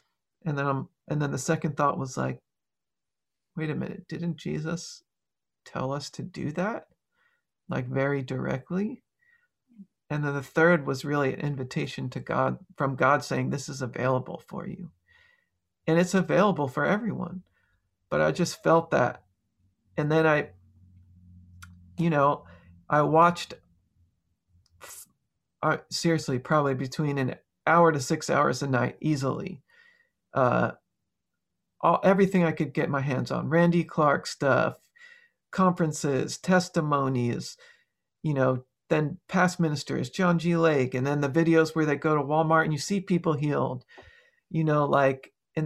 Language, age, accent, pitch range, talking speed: English, 40-59, American, 135-175 Hz, 145 wpm